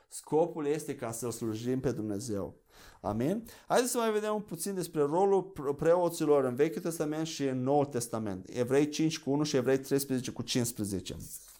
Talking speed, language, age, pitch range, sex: 170 wpm, Romanian, 30-49, 135-185 Hz, male